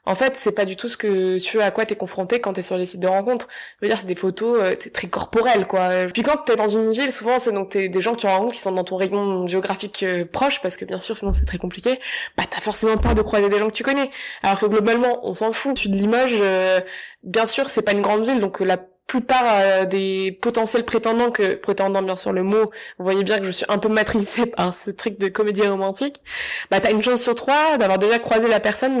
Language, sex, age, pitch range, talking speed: French, female, 20-39, 195-240 Hz, 265 wpm